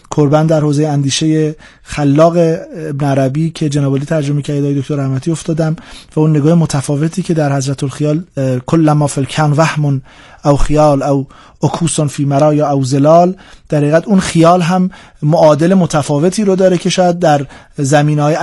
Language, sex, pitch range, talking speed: Persian, male, 145-185 Hz, 155 wpm